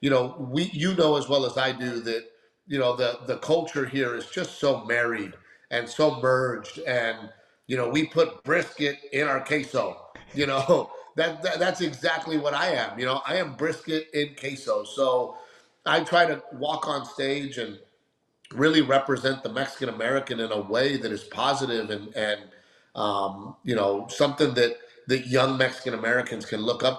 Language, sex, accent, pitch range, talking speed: English, male, American, 115-140 Hz, 180 wpm